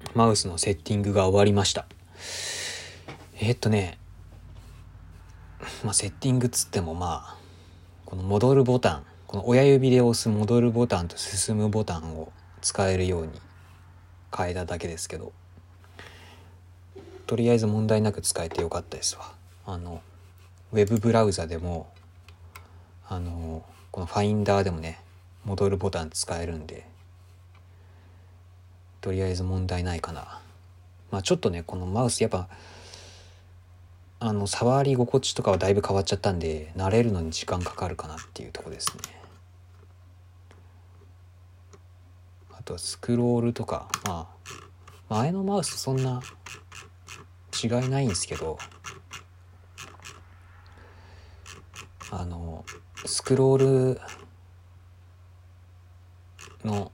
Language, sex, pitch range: Japanese, male, 90-100 Hz